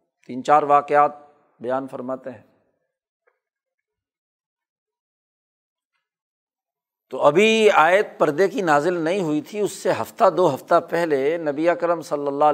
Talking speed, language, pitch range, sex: 120 wpm, Urdu, 140-175 Hz, male